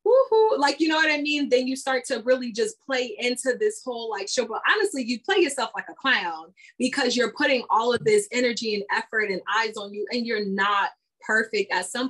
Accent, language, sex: American, English, female